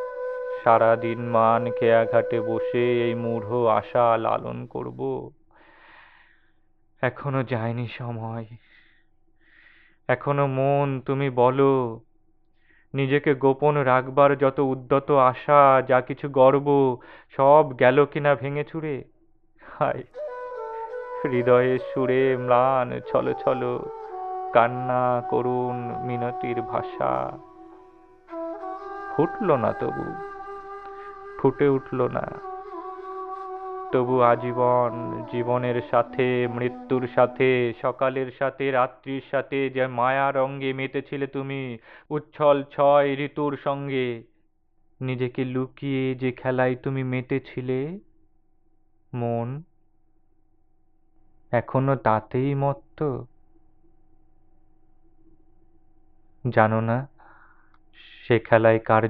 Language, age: Bengali, 30-49